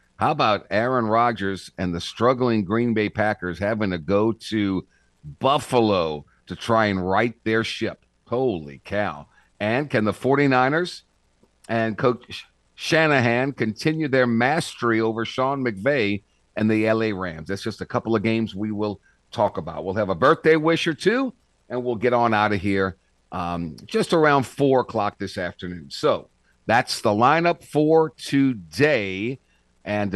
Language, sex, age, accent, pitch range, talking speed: English, male, 50-69, American, 100-135 Hz, 155 wpm